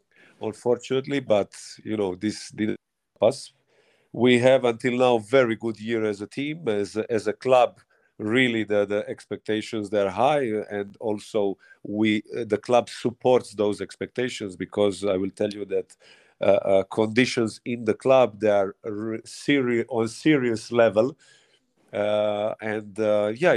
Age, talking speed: 50-69, 150 wpm